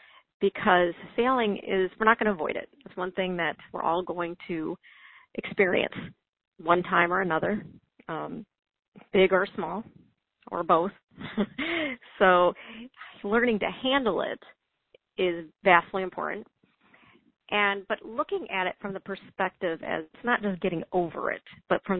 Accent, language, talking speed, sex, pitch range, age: American, English, 145 wpm, female, 175-215 Hz, 40-59